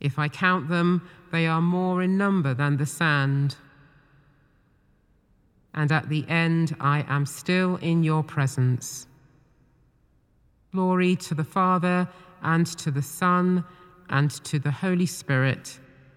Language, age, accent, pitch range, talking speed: English, 40-59, British, 130-170 Hz, 130 wpm